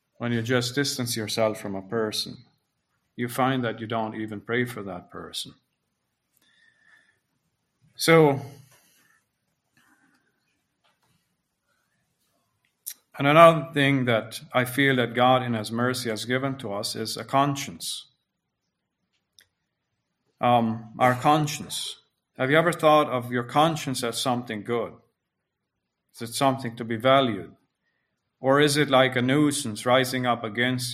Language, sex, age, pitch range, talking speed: English, male, 50-69, 115-135 Hz, 125 wpm